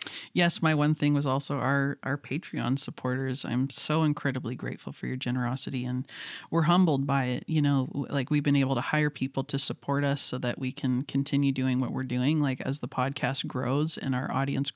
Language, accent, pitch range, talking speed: English, American, 135-150 Hz, 205 wpm